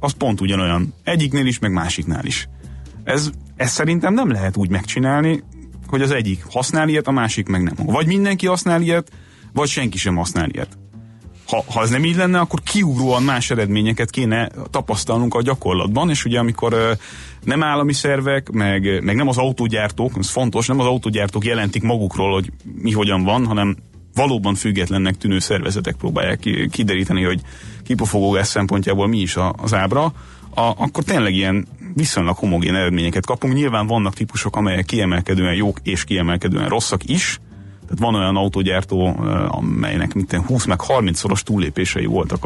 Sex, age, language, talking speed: male, 30-49, Hungarian, 155 wpm